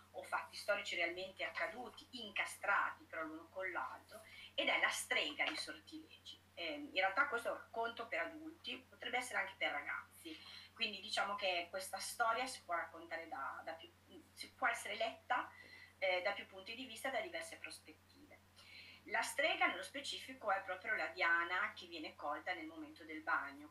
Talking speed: 165 wpm